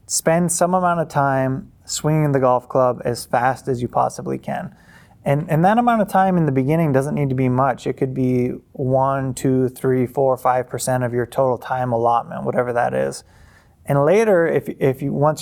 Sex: male